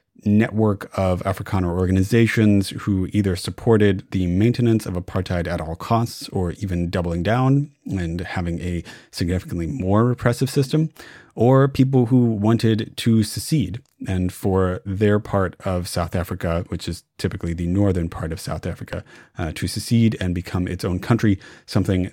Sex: male